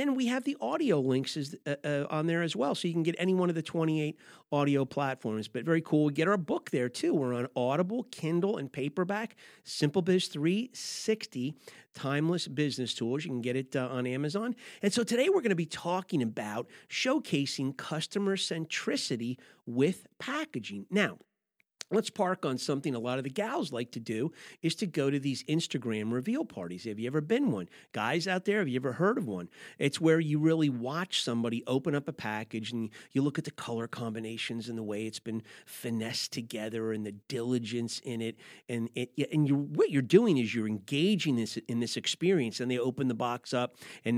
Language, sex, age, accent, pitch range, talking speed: English, male, 40-59, American, 120-165 Hz, 210 wpm